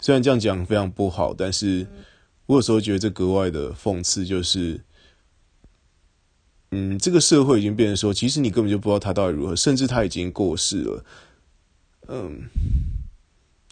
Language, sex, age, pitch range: Chinese, male, 20-39, 85-105 Hz